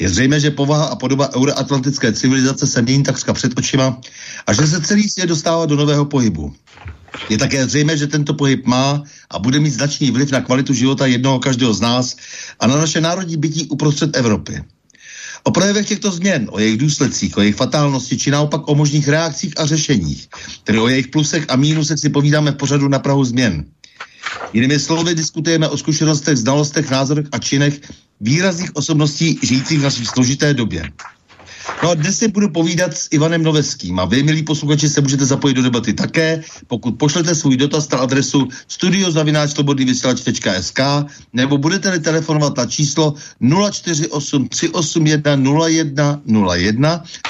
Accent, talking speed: native, 160 wpm